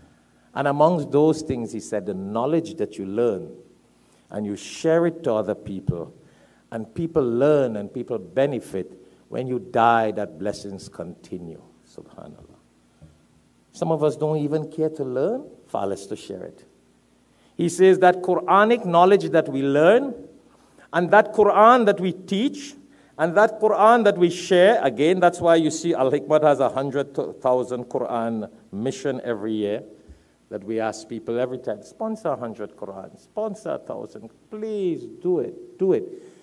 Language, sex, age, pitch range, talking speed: English, male, 50-69, 125-200 Hz, 155 wpm